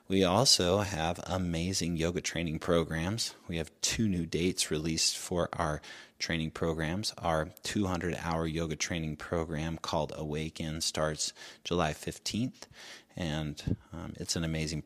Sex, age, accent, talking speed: male, 30-49, American, 130 wpm